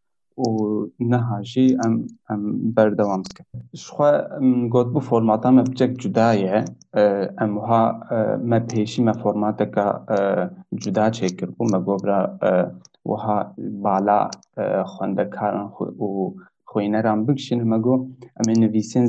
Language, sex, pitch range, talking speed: Turkish, male, 110-125 Hz, 115 wpm